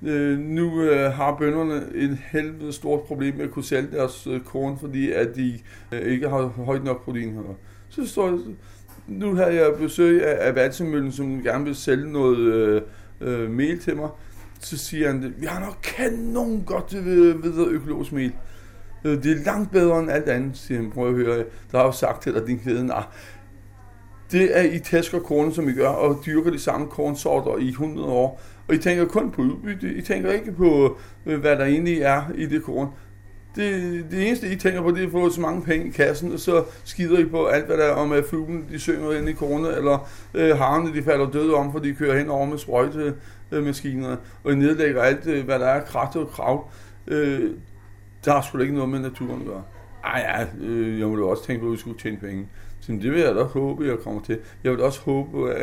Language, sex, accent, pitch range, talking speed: Danish, male, native, 120-160 Hz, 225 wpm